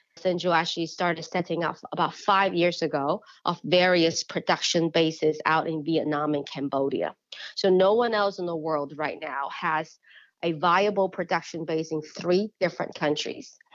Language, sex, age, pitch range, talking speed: English, female, 30-49, 165-190 Hz, 155 wpm